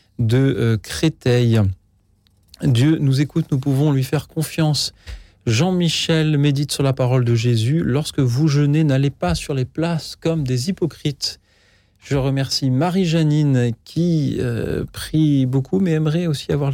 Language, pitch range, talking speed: French, 110-140 Hz, 145 wpm